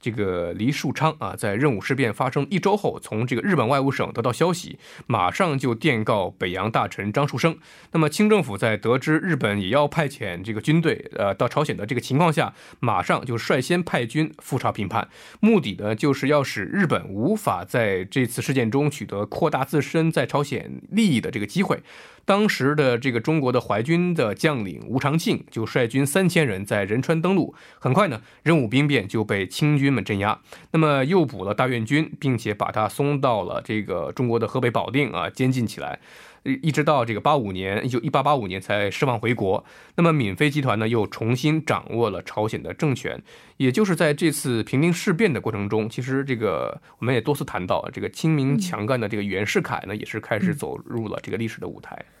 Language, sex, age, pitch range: Korean, male, 20-39, 110-155 Hz